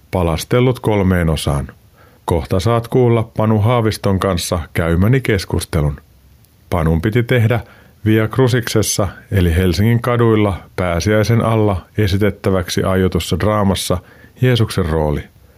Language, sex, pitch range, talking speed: Finnish, male, 95-115 Hz, 100 wpm